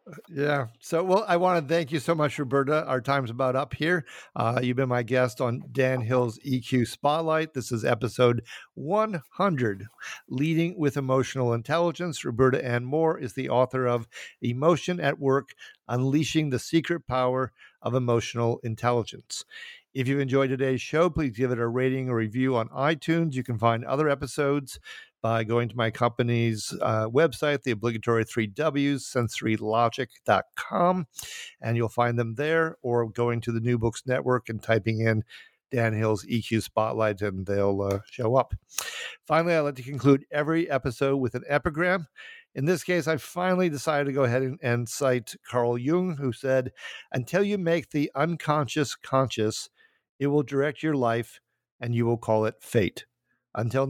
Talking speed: 165 wpm